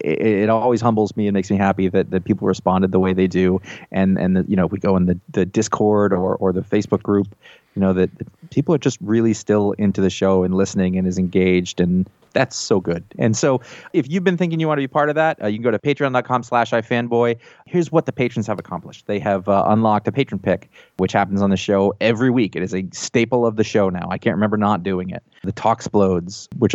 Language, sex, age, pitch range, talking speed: English, male, 30-49, 95-115 Hz, 245 wpm